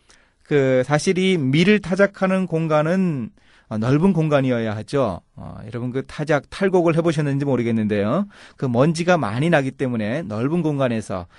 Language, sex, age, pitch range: Korean, male, 30-49, 120-185 Hz